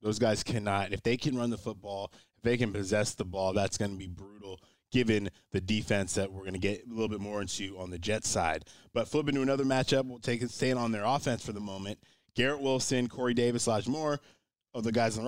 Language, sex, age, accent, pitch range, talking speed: English, male, 20-39, American, 105-125 Hz, 250 wpm